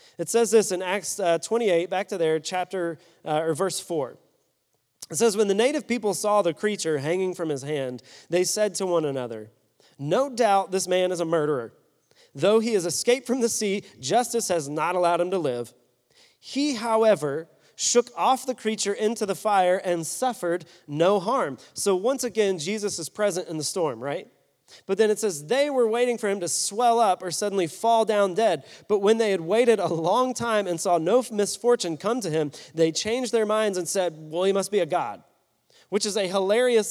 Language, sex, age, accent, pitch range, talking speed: English, male, 30-49, American, 165-215 Hz, 205 wpm